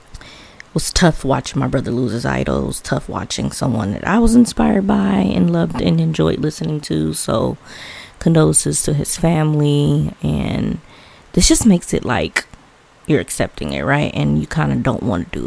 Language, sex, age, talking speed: English, female, 20-39, 180 wpm